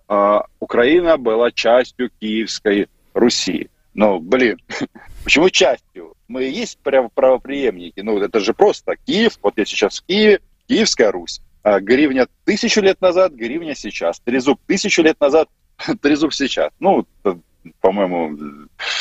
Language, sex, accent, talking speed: Russian, male, native, 130 wpm